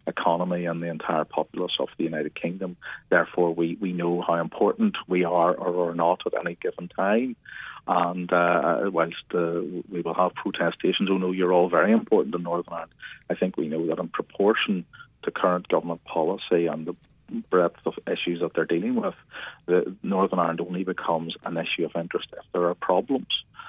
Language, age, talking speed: English, 40-59, 190 wpm